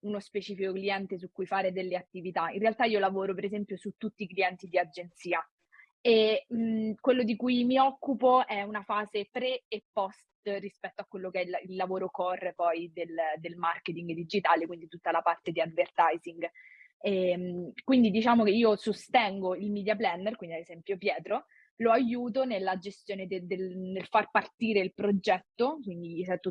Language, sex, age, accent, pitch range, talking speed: Italian, female, 20-39, native, 180-215 Hz, 185 wpm